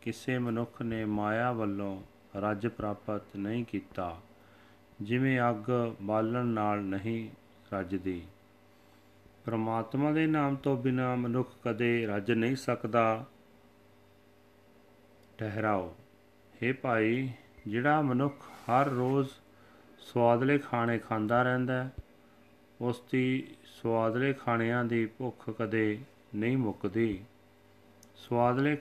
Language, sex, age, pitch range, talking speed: Punjabi, male, 40-59, 100-120 Hz, 85 wpm